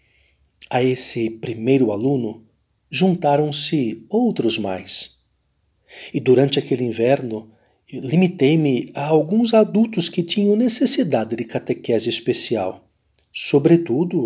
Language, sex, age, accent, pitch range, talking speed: Portuguese, male, 50-69, Brazilian, 115-165 Hz, 95 wpm